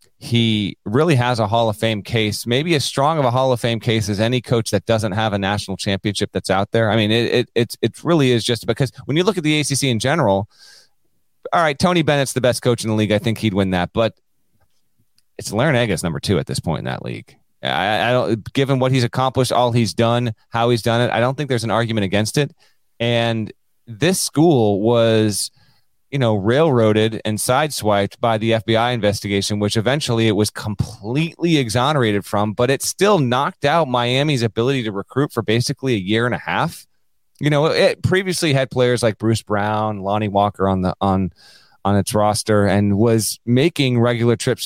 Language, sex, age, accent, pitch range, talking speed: English, male, 30-49, American, 110-135 Hz, 205 wpm